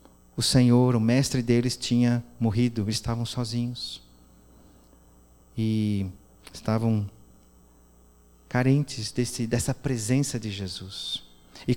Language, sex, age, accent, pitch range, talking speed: Portuguese, male, 40-59, Brazilian, 120-195 Hz, 85 wpm